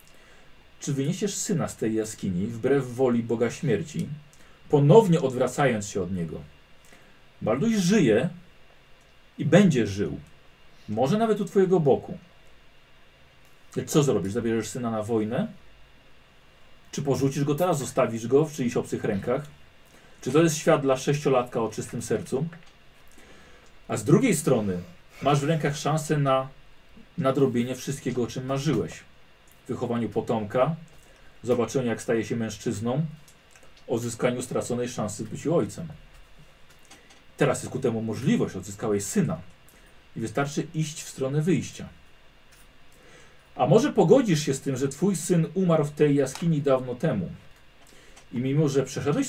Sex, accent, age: male, native, 40-59